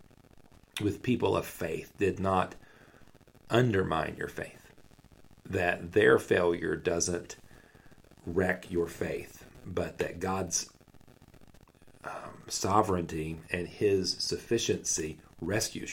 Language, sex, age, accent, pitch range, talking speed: English, male, 40-59, American, 90-115 Hz, 95 wpm